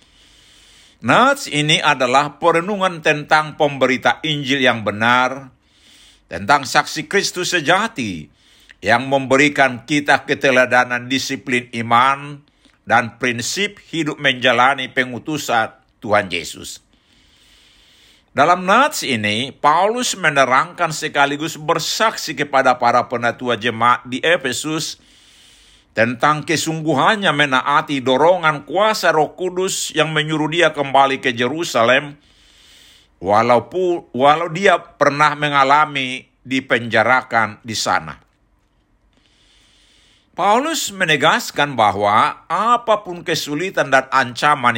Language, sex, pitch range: Indonesian, male, 125-155 Hz